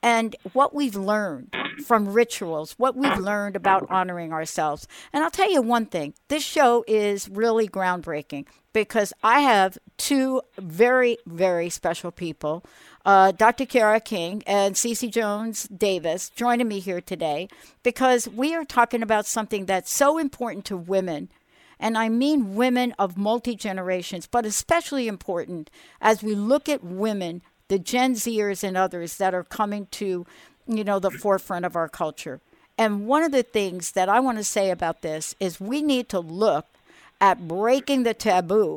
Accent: American